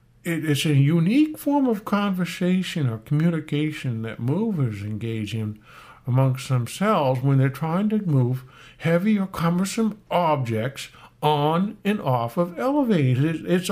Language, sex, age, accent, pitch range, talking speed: English, male, 60-79, American, 120-165 Hz, 125 wpm